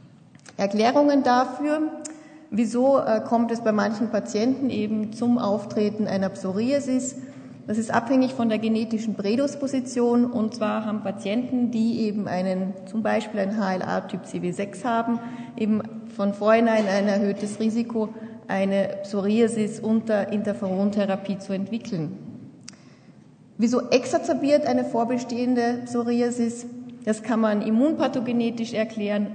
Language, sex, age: German, female, 30-49